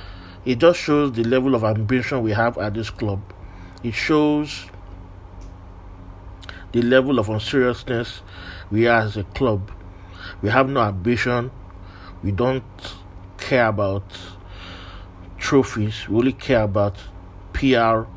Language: English